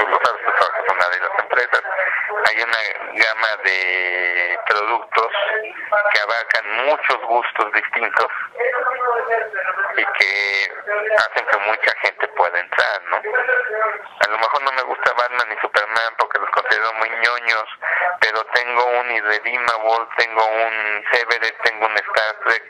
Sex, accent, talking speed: male, Mexican, 135 wpm